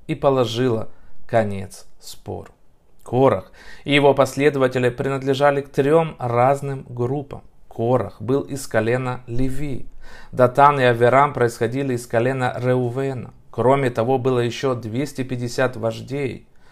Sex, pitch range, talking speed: male, 110-135 Hz, 110 wpm